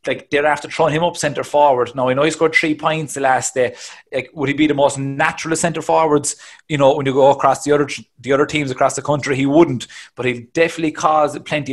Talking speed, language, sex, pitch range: 240 wpm, English, male, 125-155 Hz